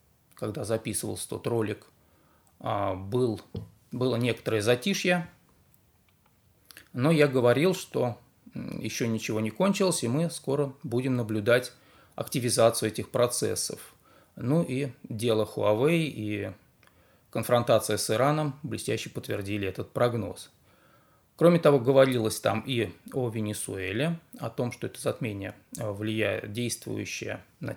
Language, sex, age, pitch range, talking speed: Russian, male, 20-39, 110-145 Hz, 110 wpm